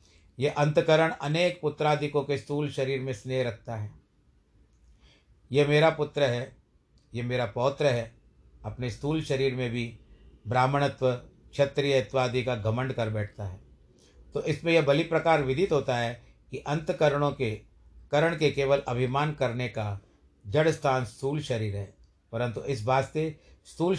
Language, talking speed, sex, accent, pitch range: Hindi, 145 wpm, male, native, 115-145 Hz